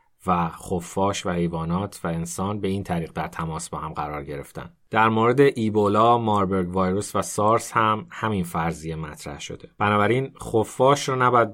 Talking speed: 160 wpm